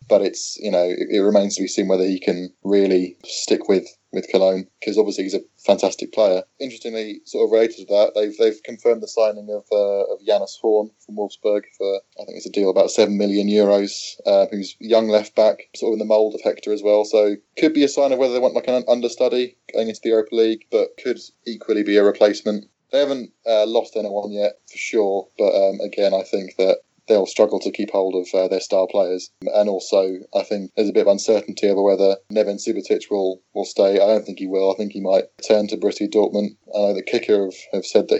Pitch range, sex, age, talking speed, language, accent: 100-110 Hz, male, 20-39, 235 wpm, English, British